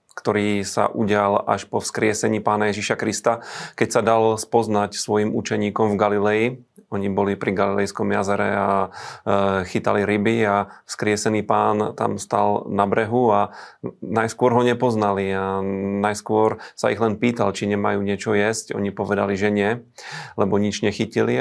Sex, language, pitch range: male, Slovak, 100-110 Hz